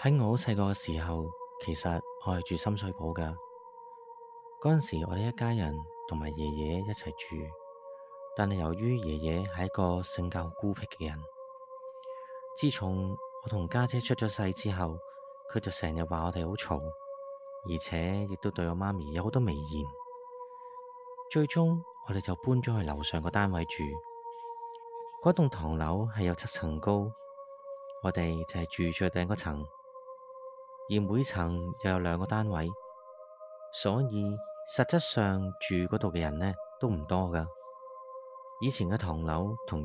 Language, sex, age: Chinese, male, 30-49